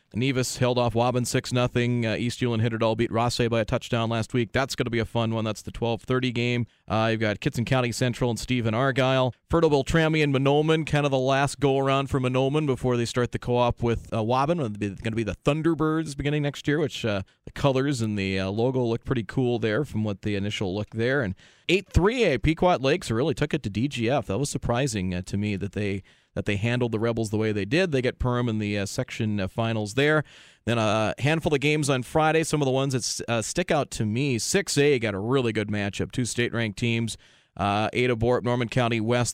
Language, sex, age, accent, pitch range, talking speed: English, male, 30-49, American, 110-135 Hz, 235 wpm